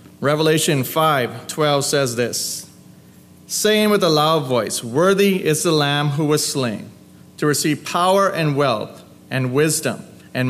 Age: 30-49